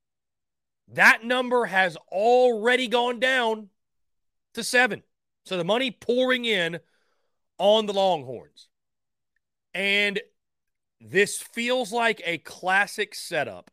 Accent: American